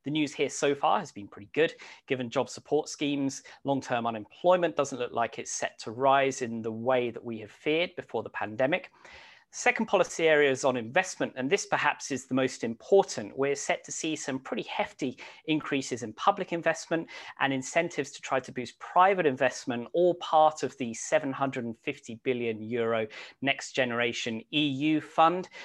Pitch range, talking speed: 120-160 Hz, 175 wpm